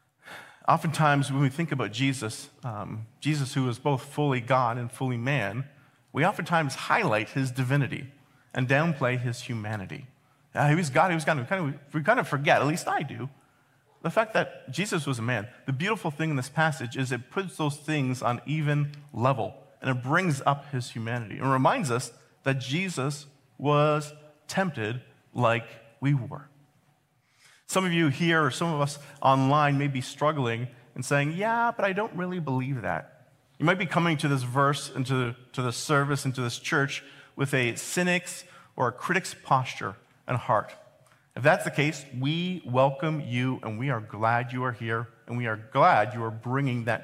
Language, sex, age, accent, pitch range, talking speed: English, male, 40-59, American, 125-150 Hz, 190 wpm